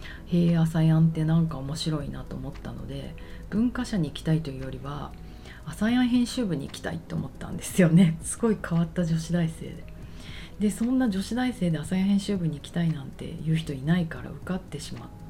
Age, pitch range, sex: 40-59, 140-190 Hz, female